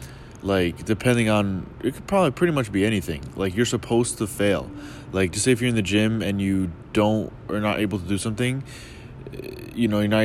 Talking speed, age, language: 210 wpm, 20-39, English